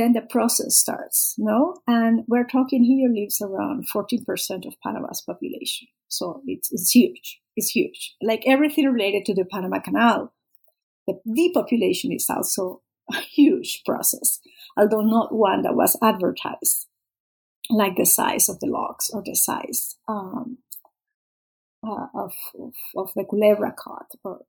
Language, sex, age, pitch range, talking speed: English, female, 50-69, 215-295 Hz, 145 wpm